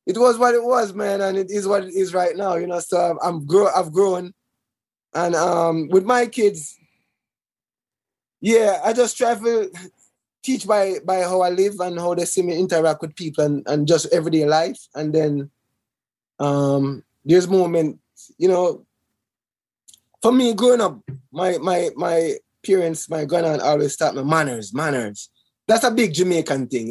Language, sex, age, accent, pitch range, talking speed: English, male, 20-39, Jamaican, 145-190 Hz, 170 wpm